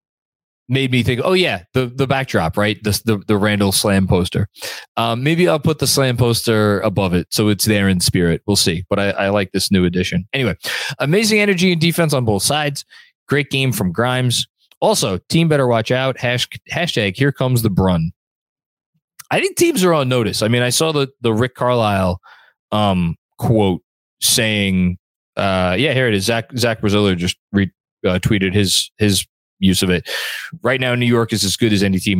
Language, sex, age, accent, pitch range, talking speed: English, male, 20-39, American, 100-140 Hz, 195 wpm